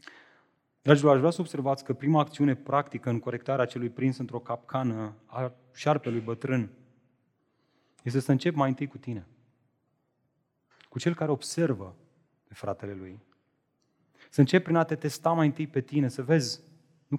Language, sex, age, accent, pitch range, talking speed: Romanian, male, 30-49, native, 125-160 Hz, 155 wpm